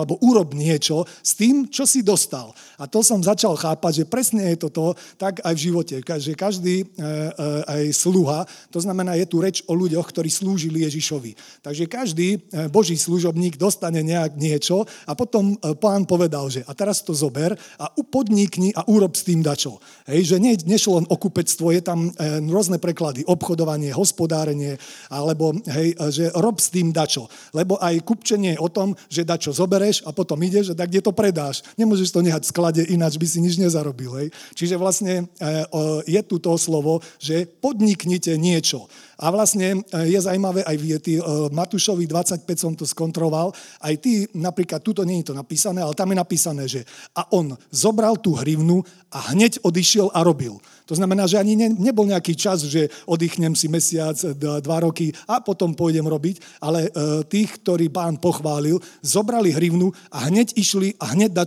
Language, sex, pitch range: Slovak, male, 155-195 Hz